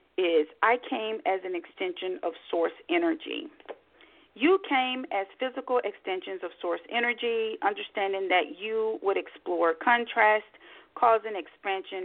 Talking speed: 125 wpm